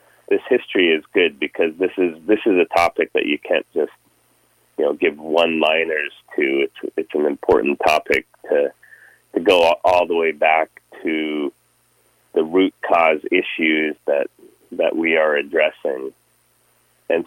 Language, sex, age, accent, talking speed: English, male, 30-49, American, 155 wpm